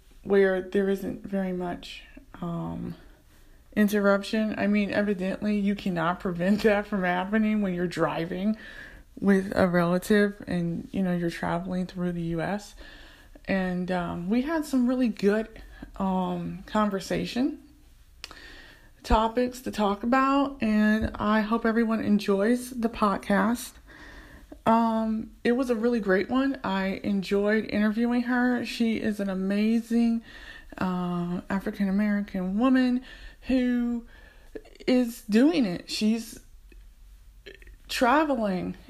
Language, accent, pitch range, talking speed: English, American, 195-240 Hz, 115 wpm